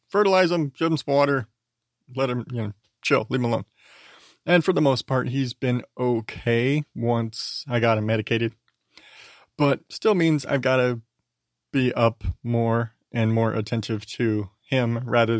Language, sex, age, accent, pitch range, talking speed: English, male, 30-49, American, 115-135 Hz, 165 wpm